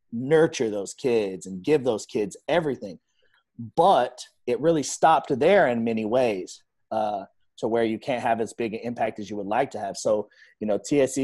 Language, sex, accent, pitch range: English, male, American, 105-120 Hz